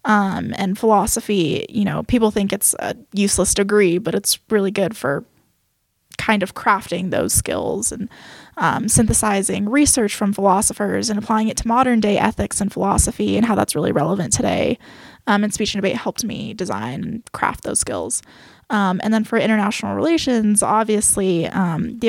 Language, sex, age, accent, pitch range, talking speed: English, female, 10-29, American, 195-225 Hz, 170 wpm